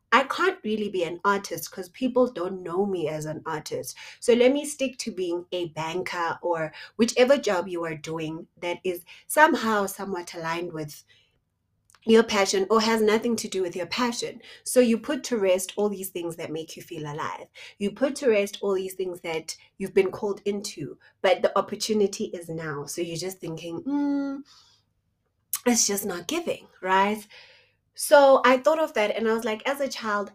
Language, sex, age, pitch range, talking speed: English, female, 30-49, 180-245 Hz, 190 wpm